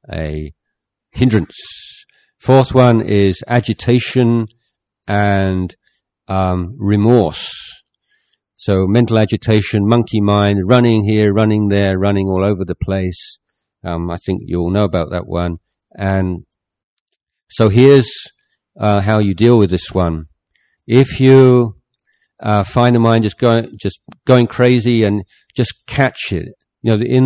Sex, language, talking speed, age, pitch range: male, English, 130 wpm, 50-69, 95-120 Hz